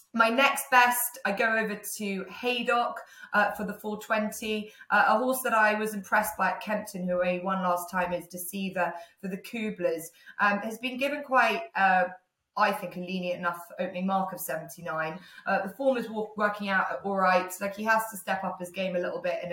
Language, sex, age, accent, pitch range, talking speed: English, female, 20-39, British, 175-210 Hz, 210 wpm